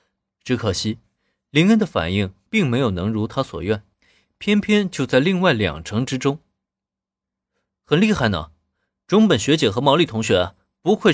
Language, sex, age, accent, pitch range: Chinese, male, 20-39, native, 100-155 Hz